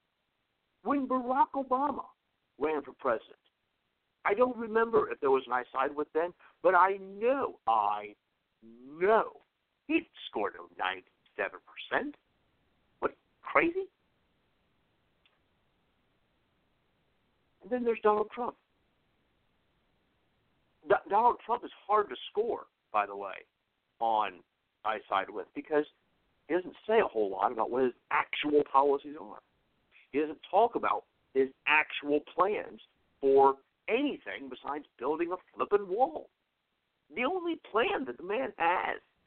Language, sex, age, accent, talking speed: English, male, 50-69, American, 120 wpm